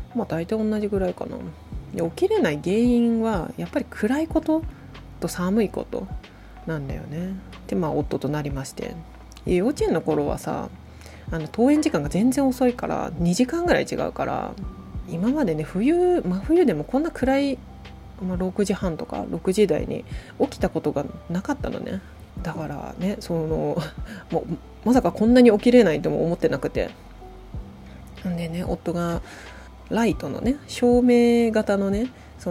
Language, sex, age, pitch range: Japanese, female, 20-39, 165-240 Hz